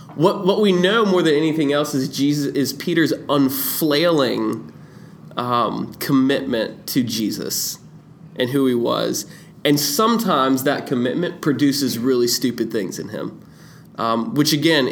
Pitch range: 125-170 Hz